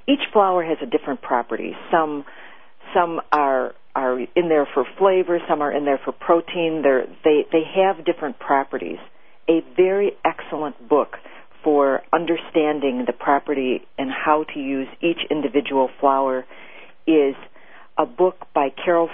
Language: English